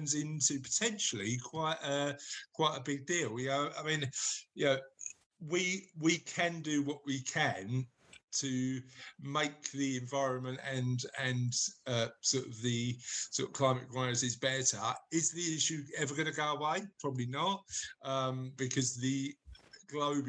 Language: English